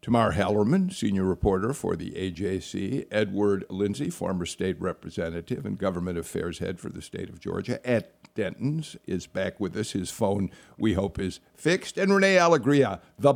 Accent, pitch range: American, 100-130 Hz